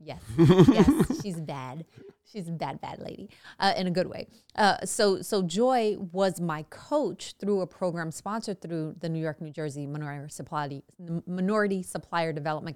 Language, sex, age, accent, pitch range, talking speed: English, female, 30-49, American, 160-195 Hz, 165 wpm